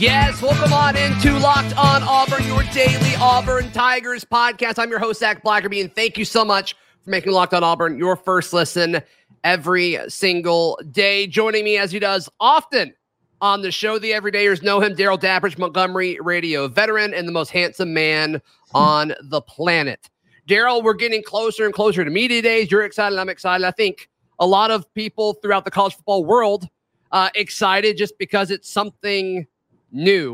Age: 30-49